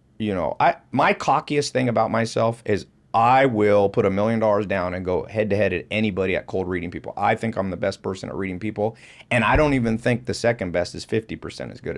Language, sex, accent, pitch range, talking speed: English, male, American, 95-120 Hz, 240 wpm